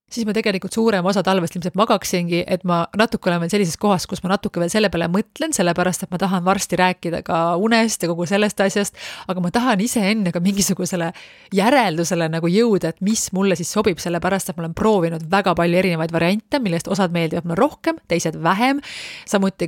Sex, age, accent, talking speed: female, 30-49, Finnish, 195 wpm